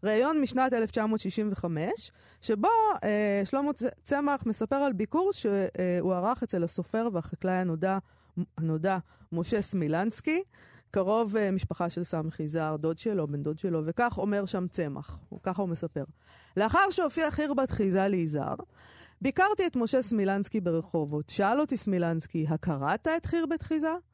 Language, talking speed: Hebrew, 130 wpm